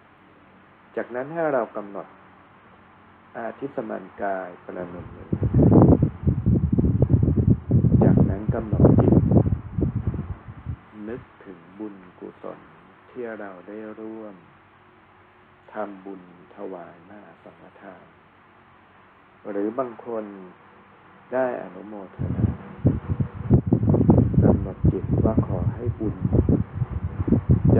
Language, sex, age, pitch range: Thai, male, 60-79, 95-115 Hz